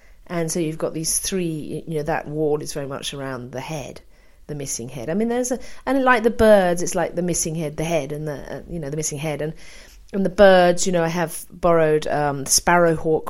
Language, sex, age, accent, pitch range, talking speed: English, female, 40-59, British, 150-175 Hz, 240 wpm